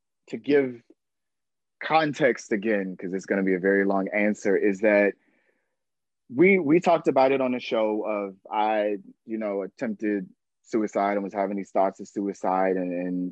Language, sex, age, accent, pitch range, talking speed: English, male, 30-49, American, 100-130 Hz, 170 wpm